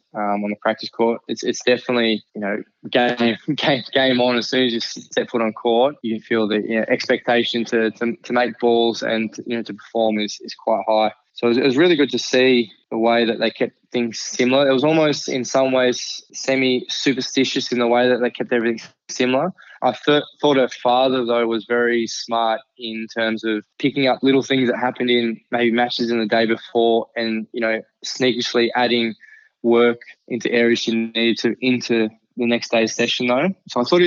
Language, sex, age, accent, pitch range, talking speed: English, male, 10-29, Australian, 115-125 Hz, 210 wpm